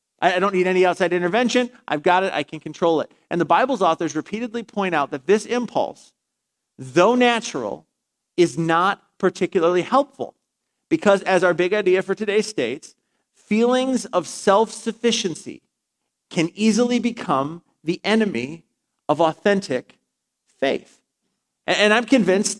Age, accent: 40-59, American